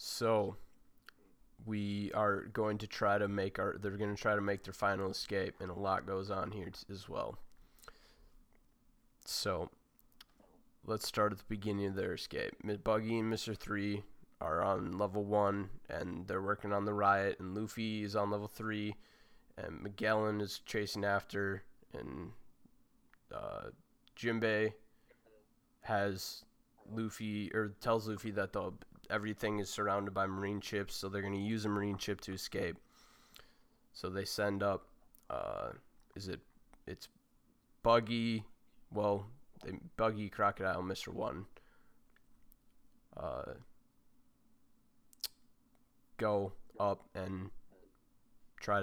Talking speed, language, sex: 130 wpm, English, male